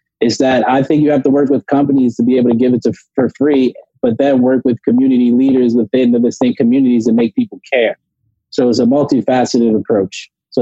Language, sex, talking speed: English, male, 220 wpm